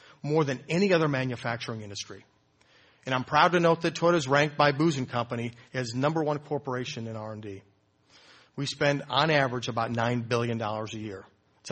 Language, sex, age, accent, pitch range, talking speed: English, male, 40-59, American, 120-155 Hz, 175 wpm